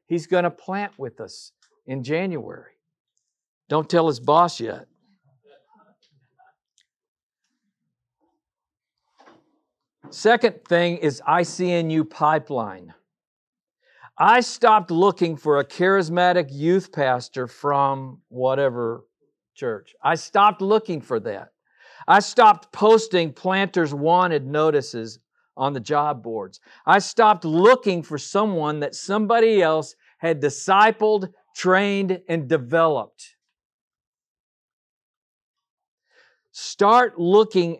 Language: English